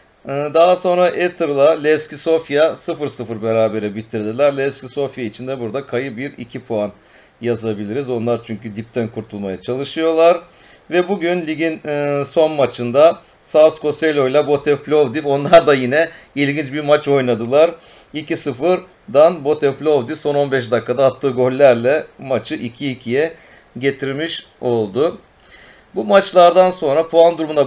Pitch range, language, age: 120-155 Hz, Turkish, 40-59